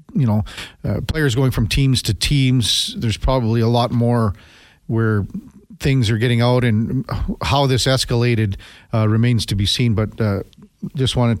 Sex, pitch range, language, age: male, 115-145 Hz, English, 40-59